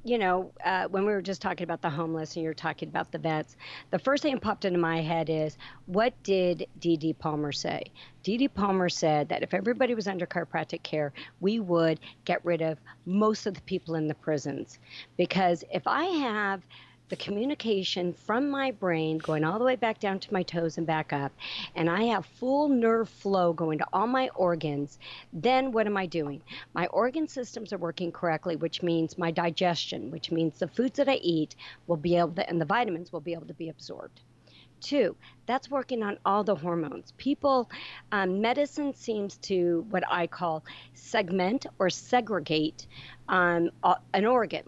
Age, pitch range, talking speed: 50-69, 165-225 Hz, 195 wpm